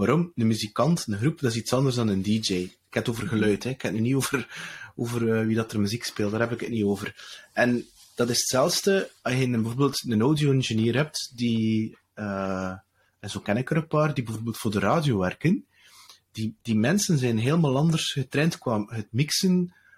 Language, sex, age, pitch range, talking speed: English, male, 30-49, 110-145 Hz, 215 wpm